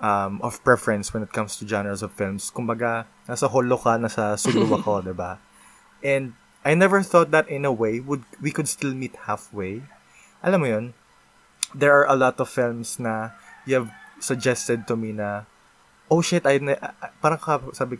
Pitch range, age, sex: 105-130 Hz, 20-39, male